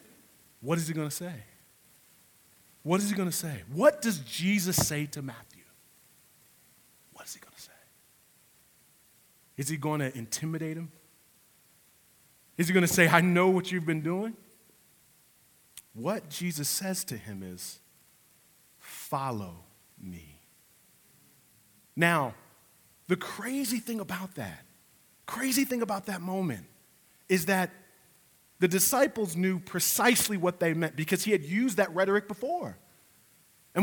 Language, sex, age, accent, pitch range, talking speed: English, male, 40-59, American, 155-225 Hz, 135 wpm